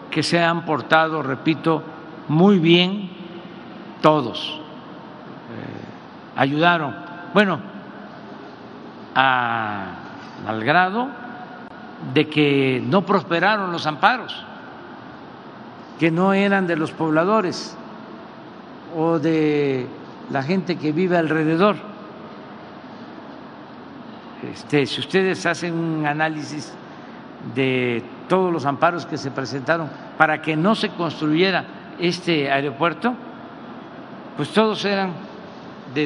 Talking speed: 95 wpm